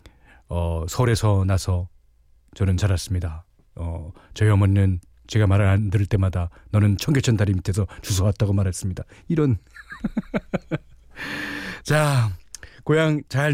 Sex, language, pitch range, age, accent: male, Korean, 90-135 Hz, 40-59, native